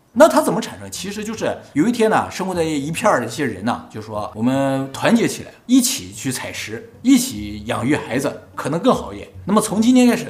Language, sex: Chinese, male